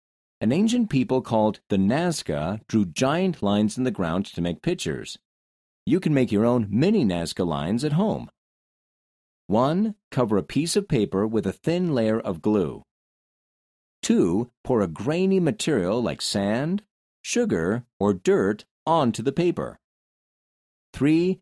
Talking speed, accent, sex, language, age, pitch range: 145 wpm, American, male, English, 40-59, 100-165 Hz